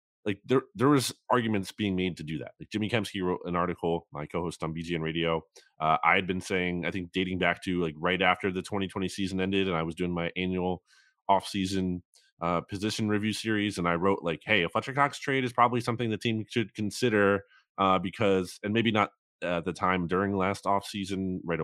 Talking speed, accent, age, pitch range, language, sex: 225 wpm, American, 20-39, 85-110 Hz, English, male